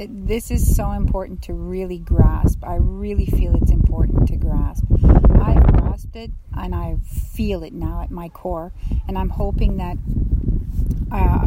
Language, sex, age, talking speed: English, female, 40-59, 155 wpm